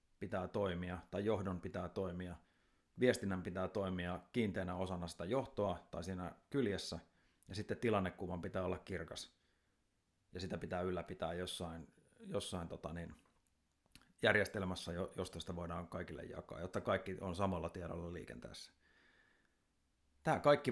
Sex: male